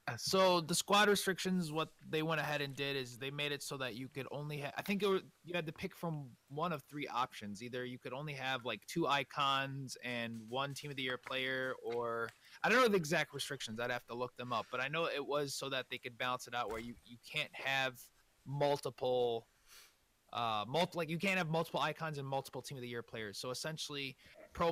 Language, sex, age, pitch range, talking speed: English, male, 20-39, 125-155 Hz, 225 wpm